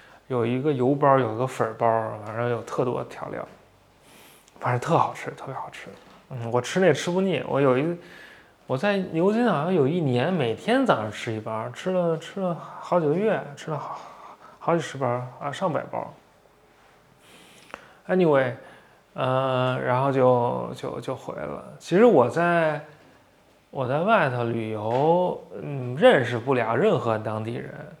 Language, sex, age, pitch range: English, male, 20-39, 125-170 Hz